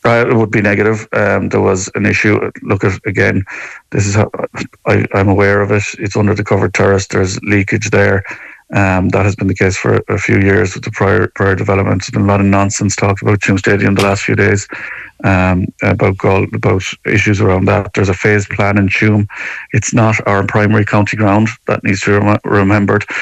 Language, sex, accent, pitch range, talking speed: English, male, Irish, 100-105 Hz, 210 wpm